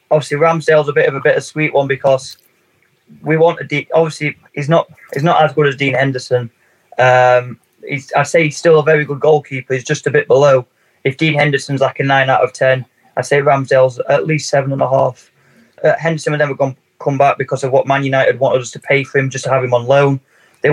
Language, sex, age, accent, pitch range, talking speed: English, male, 20-39, British, 135-160 Hz, 235 wpm